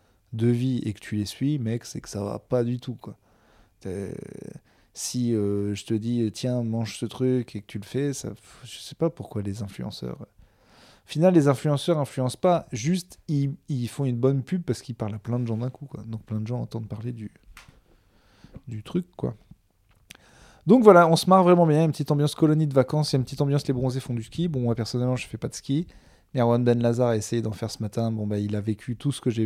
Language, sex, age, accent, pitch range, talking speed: French, male, 20-39, French, 110-130 Hz, 255 wpm